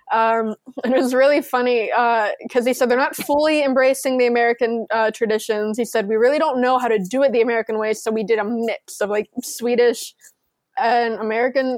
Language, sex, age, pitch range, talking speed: English, female, 20-39, 225-260 Hz, 210 wpm